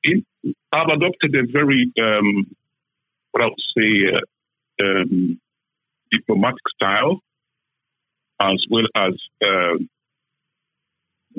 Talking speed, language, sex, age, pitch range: 90 wpm, English, male, 50-69, 110-180 Hz